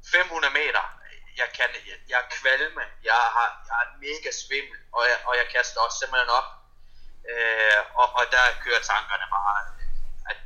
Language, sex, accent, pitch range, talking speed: Danish, male, native, 120-150 Hz, 170 wpm